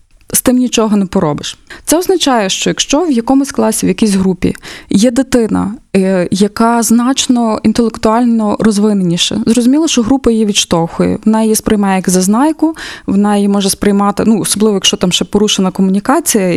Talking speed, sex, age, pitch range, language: 150 wpm, female, 20-39, 190-240 Hz, Ukrainian